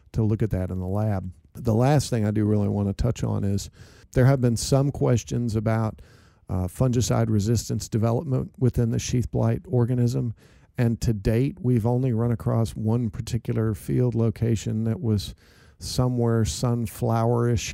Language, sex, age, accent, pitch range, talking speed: English, male, 50-69, American, 105-120 Hz, 160 wpm